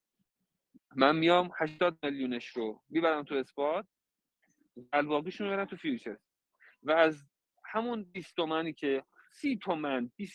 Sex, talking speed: male, 130 wpm